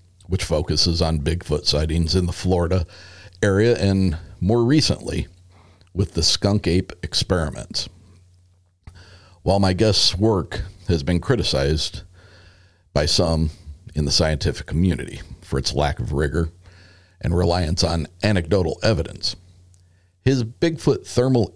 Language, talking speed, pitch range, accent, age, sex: English, 120 wpm, 85-95 Hz, American, 50-69, male